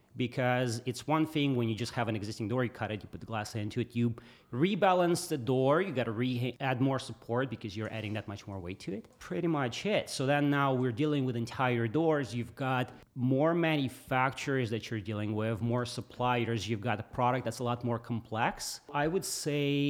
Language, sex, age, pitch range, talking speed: English, male, 30-49, 115-135 Hz, 215 wpm